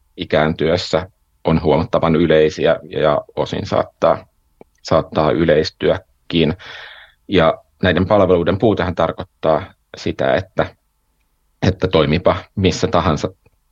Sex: male